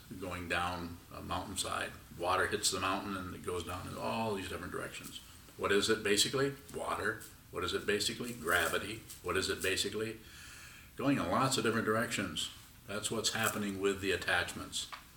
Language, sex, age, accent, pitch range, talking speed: English, male, 50-69, American, 95-115 Hz, 170 wpm